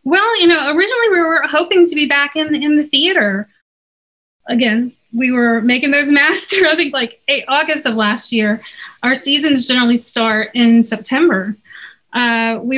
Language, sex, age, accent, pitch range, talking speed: English, female, 30-49, American, 225-275 Hz, 170 wpm